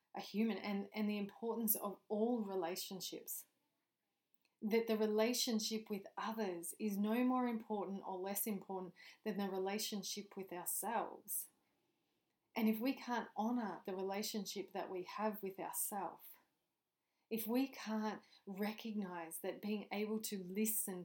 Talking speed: 130 wpm